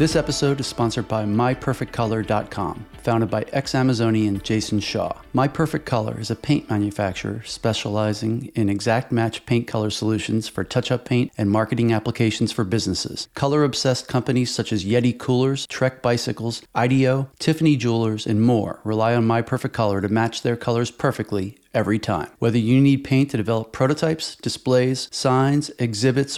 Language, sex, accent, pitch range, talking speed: English, male, American, 115-145 Hz, 160 wpm